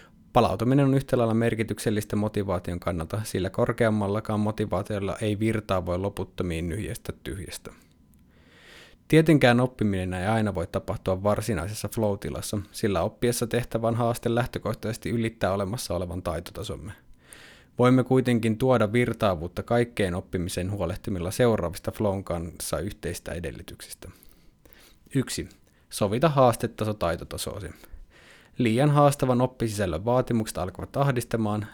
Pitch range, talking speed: 95-120 Hz, 100 wpm